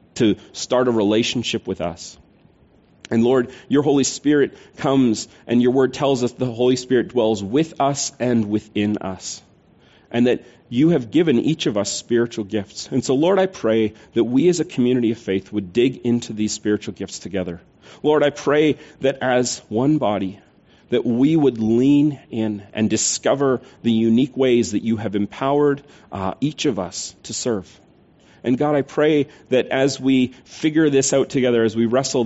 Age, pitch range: 40-59, 110-135 Hz